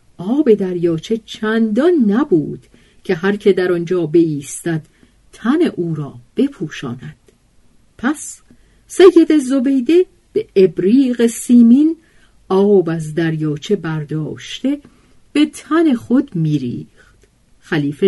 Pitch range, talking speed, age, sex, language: 160-245 Hz, 95 wpm, 50-69, female, Persian